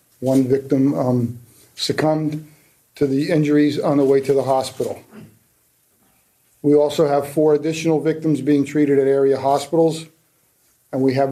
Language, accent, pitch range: English, American, 135-155 Hz